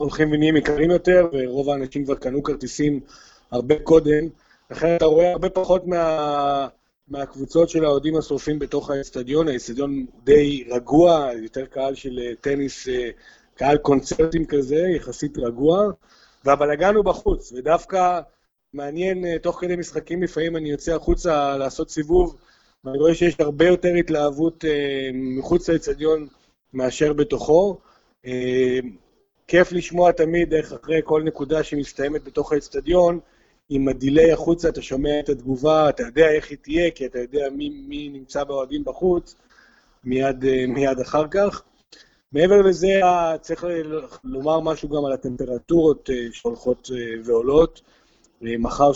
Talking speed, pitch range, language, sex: 125 wpm, 130-165 Hz, Hebrew, male